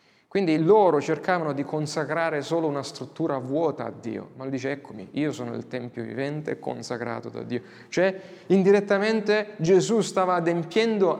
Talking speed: 150 wpm